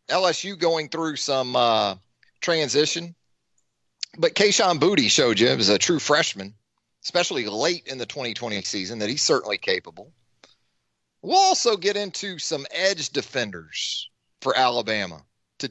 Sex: male